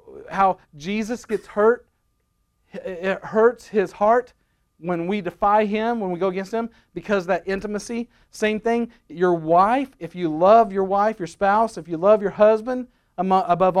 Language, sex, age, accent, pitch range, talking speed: English, male, 40-59, American, 180-225 Hz, 165 wpm